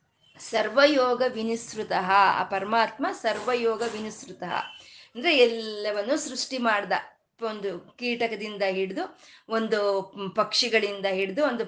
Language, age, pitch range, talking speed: Kannada, 20-39, 205-280 Hz, 85 wpm